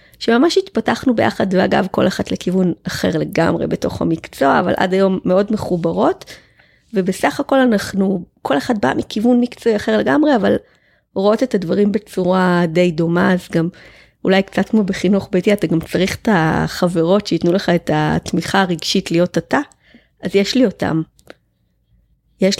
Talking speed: 150 wpm